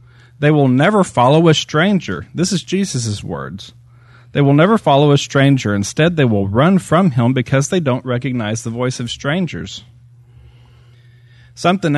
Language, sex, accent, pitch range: English, male, American, 120-140 Hz